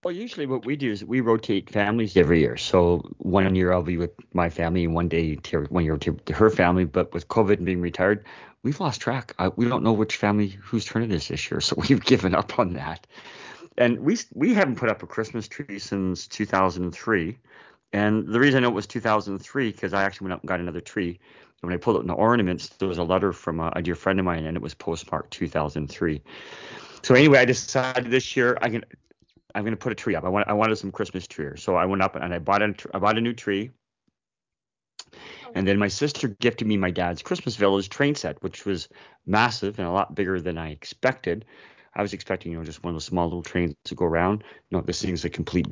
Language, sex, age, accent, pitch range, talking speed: English, male, 40-59, American, 85-110 Hz, 245 wpm